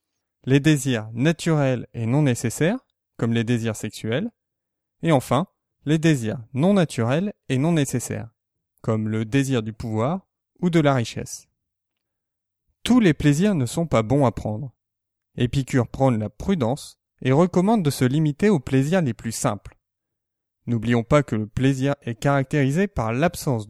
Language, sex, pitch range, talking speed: French, male, 110-165 Hz, 150 wpm